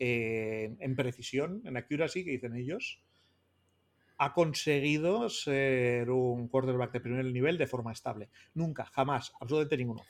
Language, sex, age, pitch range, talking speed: Spanish, male, 30-49, 115-145 Hz, 135 wpm